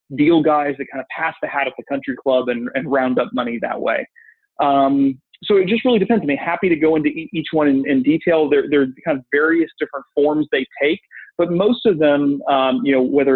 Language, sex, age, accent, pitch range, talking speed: English, male, 30-49, American, 135-160 Hz, 245 wpm